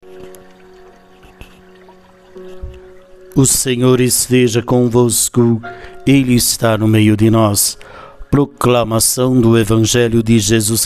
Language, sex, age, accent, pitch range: Portuguese, male, 60-79, Brazilian, 105-125 Hz